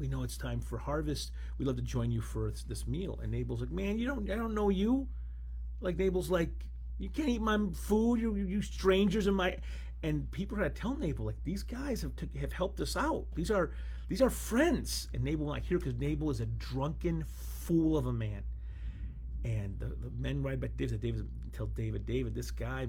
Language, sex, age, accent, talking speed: English, male, 40-59, American, 220 wpm